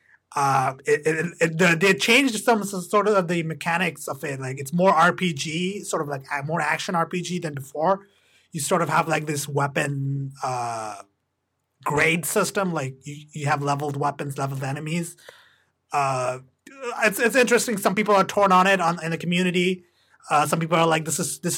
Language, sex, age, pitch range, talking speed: English, male, 30-49, 135-185 Hz, 180 wpm